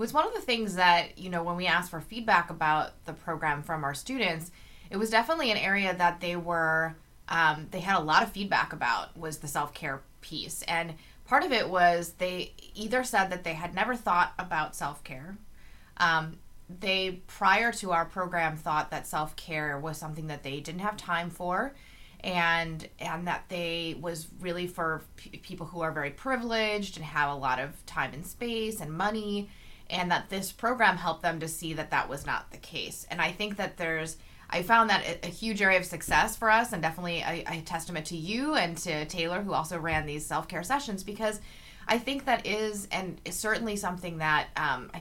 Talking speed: 200 wpm